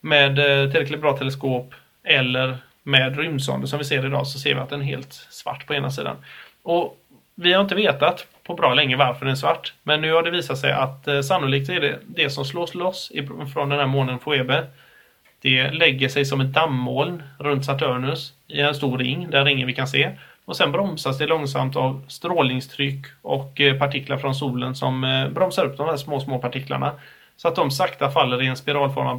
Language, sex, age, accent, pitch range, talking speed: Swedish, male, 30-49, native, 130-145 Hz, 200 wpm